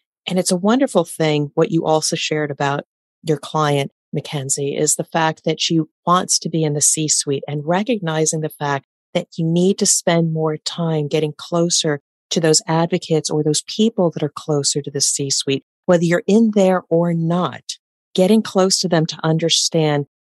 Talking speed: 180 wpm